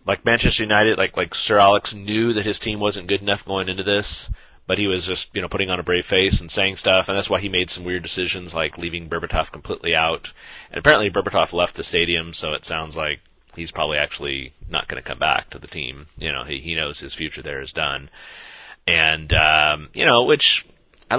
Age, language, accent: 30-49, English, American